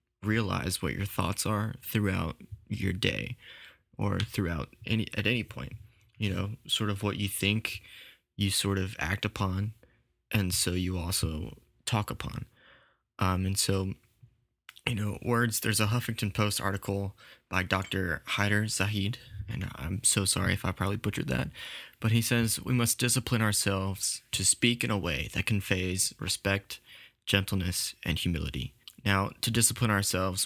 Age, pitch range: 20-39, 95-115 Hz